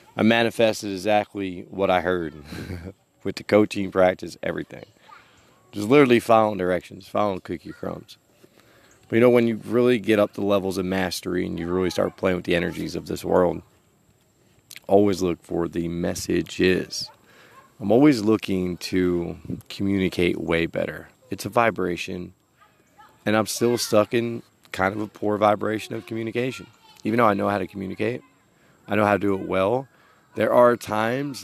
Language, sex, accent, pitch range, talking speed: English, male, American, 95-115 Hz, 160 wpm